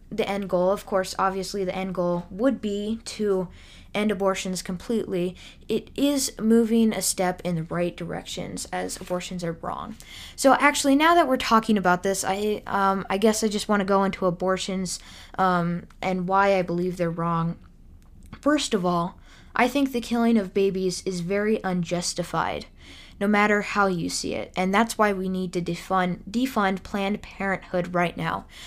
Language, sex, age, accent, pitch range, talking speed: English, female, 10-29, American, 180-215 Hz, 175 wpm